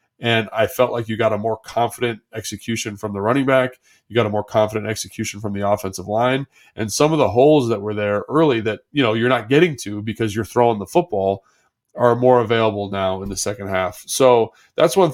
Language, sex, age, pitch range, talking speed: English, male, 20-39, 105-125 Hz, 220 wpm